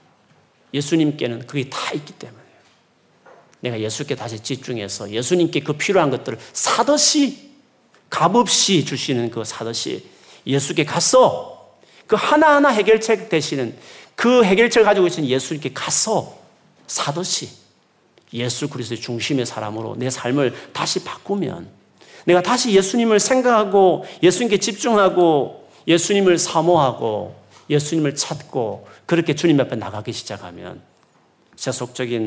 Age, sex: 40-59, male